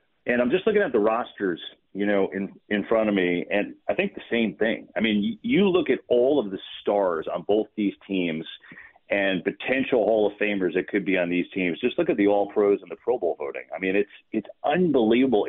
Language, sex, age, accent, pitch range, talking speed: English, male, 40-59, American, 100-130 Hz, 235 wpm